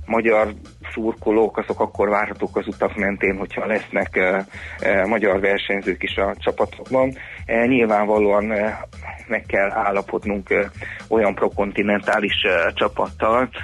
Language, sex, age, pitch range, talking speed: Hungarian, male, 30-49, 100-110 Hz, 95 wpm